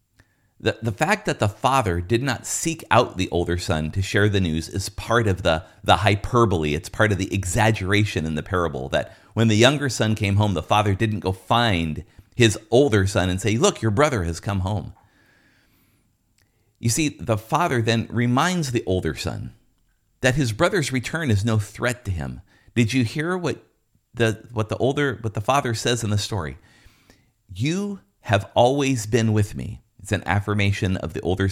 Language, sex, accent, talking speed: English, male, American, 185 wpm